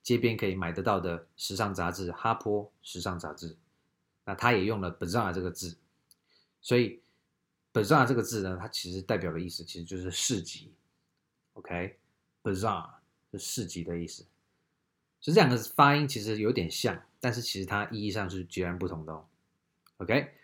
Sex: male